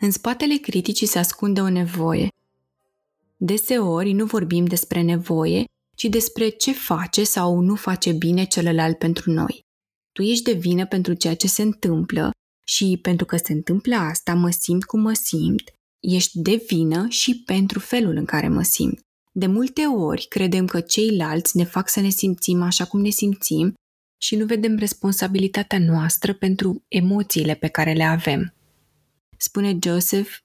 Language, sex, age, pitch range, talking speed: Romanian, female, 20-39, 175-215 Hz, 160 wpm